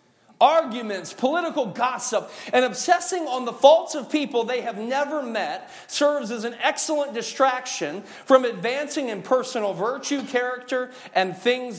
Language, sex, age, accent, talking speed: English, male, 40-59, American, 135 wpm